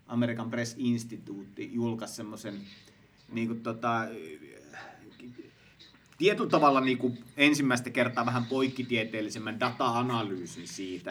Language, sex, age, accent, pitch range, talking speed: Finnish, male, 30-49, native, 110-125 Hz, 80 wpm